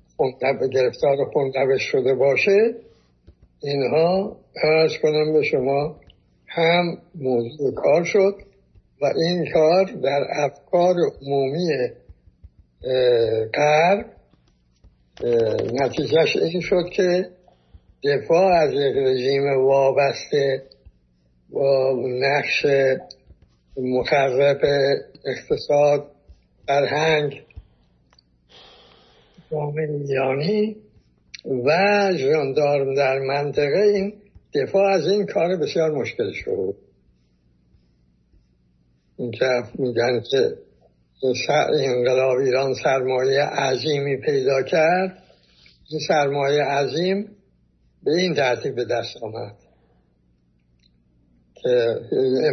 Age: 60-79